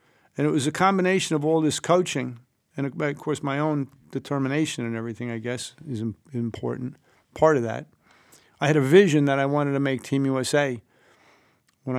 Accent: American